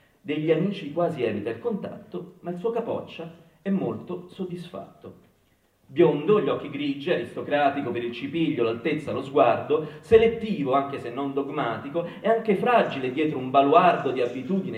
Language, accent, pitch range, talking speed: Italian, native, 135-190 Hz, 150 wpm